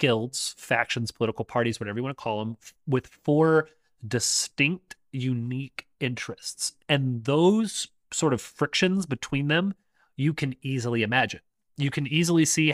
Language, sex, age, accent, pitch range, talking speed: English, male, 30-49, American, 115-145 Hz, 145 wpm